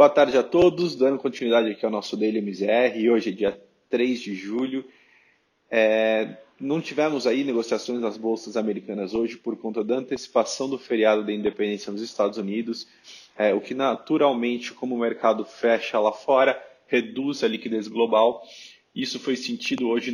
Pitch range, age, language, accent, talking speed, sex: 105-120 Hz, 20-39, Portuguese, Brazilian, 160 wpm, male